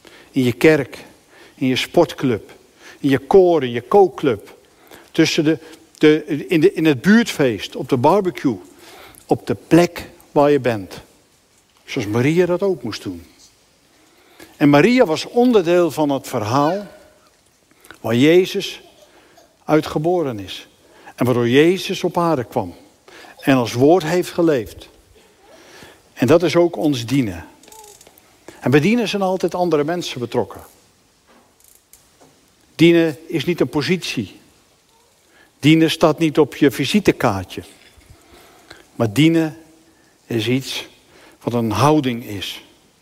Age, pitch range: 60-79, 130-175 Hz